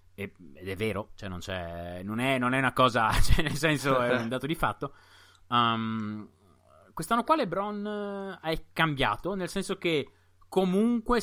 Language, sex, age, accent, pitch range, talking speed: Italian, male, 30-49, native, 110-150 Hz, 160 wpm